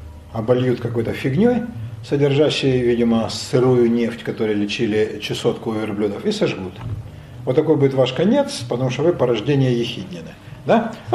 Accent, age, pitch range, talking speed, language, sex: native, 50-69, 115-175 Hz, 140 wpm, Russian, male